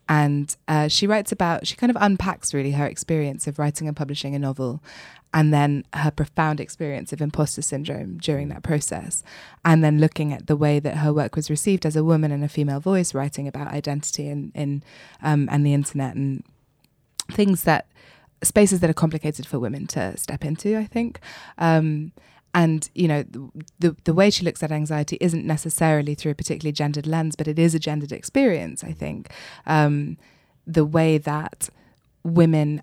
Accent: British